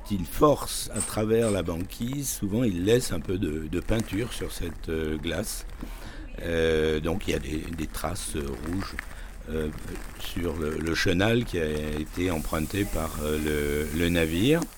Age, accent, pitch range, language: 60-79, French, 85-110 Hz, French